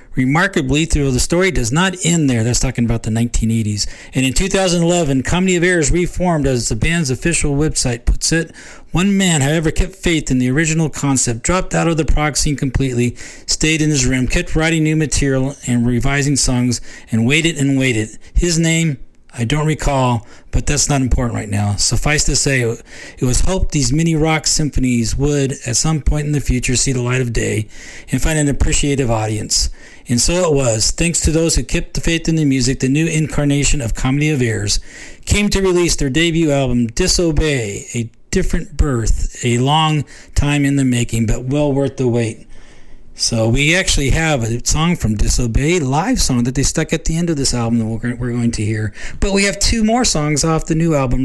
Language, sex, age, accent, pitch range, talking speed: English, male, 40-59, American, 120-160 Hz, 200 wpm